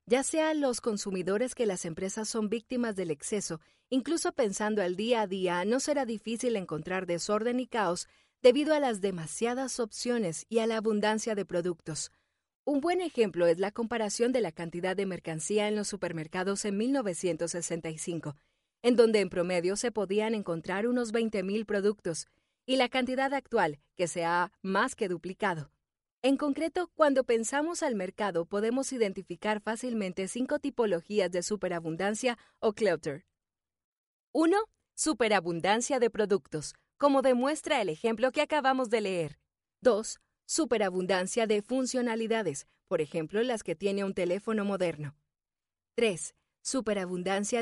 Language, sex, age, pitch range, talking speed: Spanish, female, 40-59, 185-245 Hz, 140 wpm